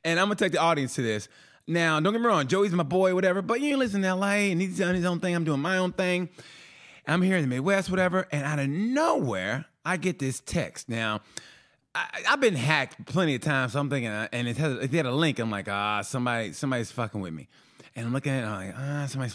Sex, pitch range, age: male, 120-180 Hz, 30-49